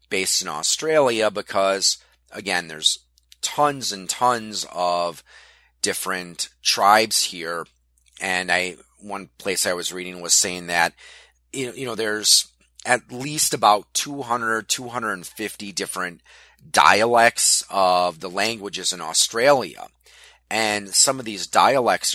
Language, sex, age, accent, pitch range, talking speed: English, male, 30-49, American, 75-115 Hz, 115 wpm